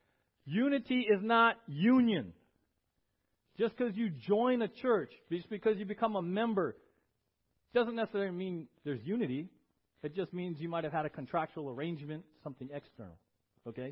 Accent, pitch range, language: American, 125-180 Hz, English